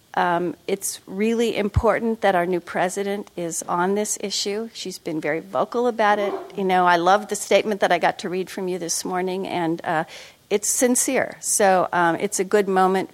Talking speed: 195 wpm